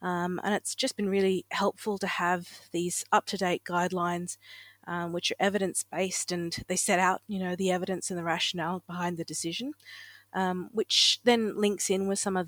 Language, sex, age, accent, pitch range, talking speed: English, female, 30-49, Australian, 170-190 Hz, 185 wpm